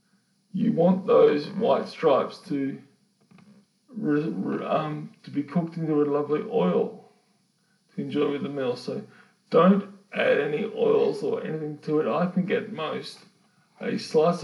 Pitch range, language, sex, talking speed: 150-205 Hz, English, male, 140 wpm